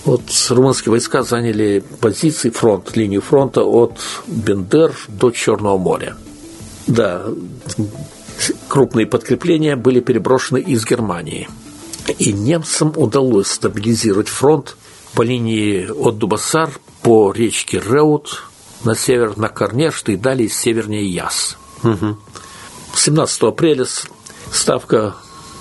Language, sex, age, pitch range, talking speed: Russian, male, 50-69, 110-140 Hz, 105 wpm